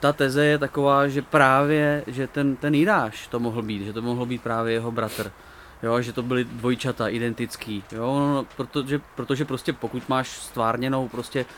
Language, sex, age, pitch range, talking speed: Czech, male, 20-39, 115-130 Hz, 175 wpm